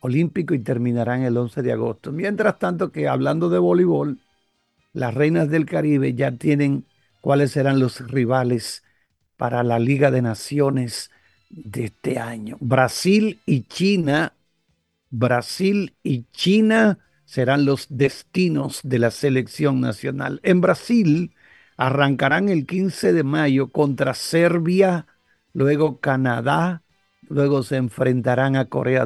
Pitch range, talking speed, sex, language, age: 125-155 Hz, 125 wpm, male, Spanish, 50-69